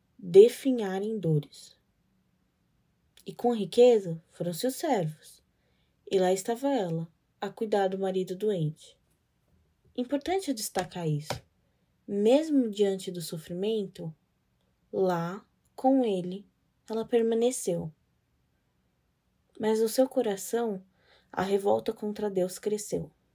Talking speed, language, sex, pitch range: 100 wpm, Portuguese, female, 180-225 Hz